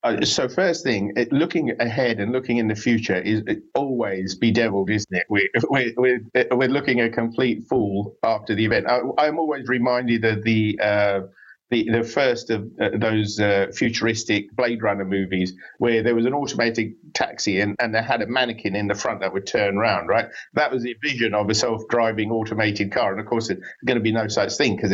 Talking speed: 205 wpm